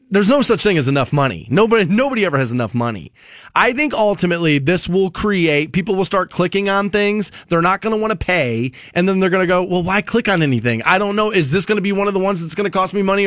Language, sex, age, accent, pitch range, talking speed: English, male, 20-39, American, 155-215 Hz, 275 wpm